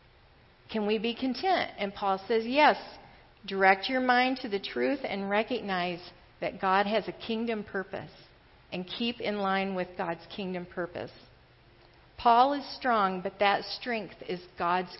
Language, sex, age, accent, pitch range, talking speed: English, female, 40-59, American, 185-230 Hz, 150 wpm